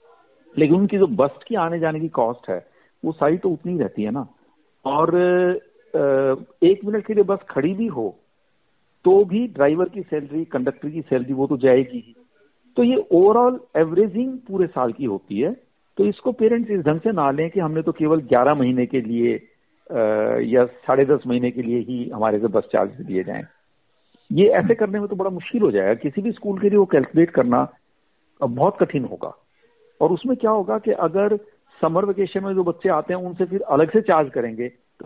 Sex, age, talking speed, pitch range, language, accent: male, 50-69, 195 wpm, 140-205 Hz, Hindi, native